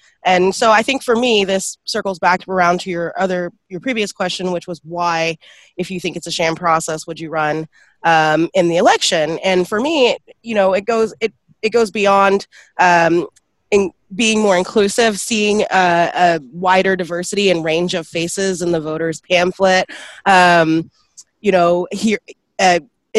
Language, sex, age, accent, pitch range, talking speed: English, female, 20-39, American, 170-200 Hz, 175 wpm